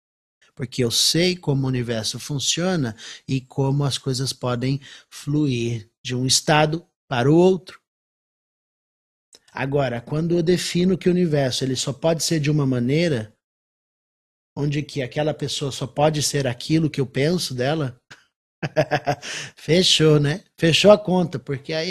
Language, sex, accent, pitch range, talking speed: Portuguese, male, Brazilian, 130-175 Hz, 135 wpm